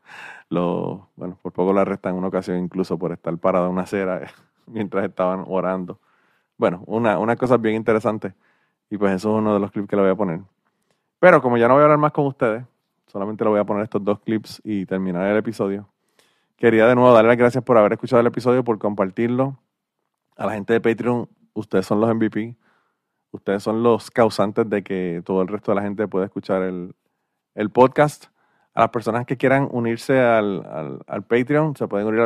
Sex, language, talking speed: male, Spanish, 210 wpm